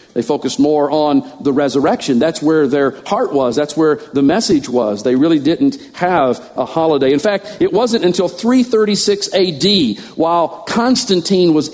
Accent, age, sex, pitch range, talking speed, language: American, 50-69, male, 150-195 Hz, 165 wpm, English